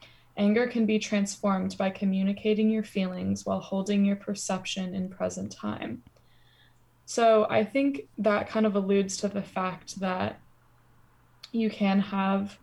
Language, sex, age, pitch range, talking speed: English, female, 10-29, 190-215 Hz, 140 wpm